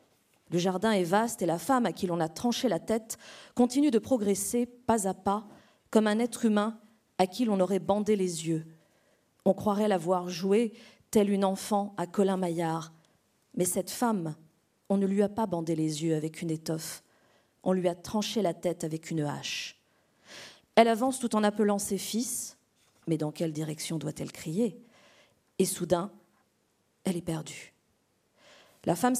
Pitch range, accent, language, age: 175-230 Hz, French, French, 40-59